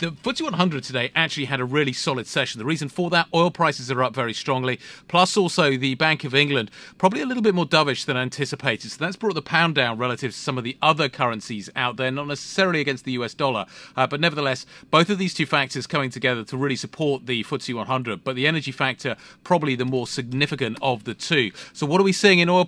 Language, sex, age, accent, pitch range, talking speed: English, male, 40-59, British, 120-150 Hz, 235 wpm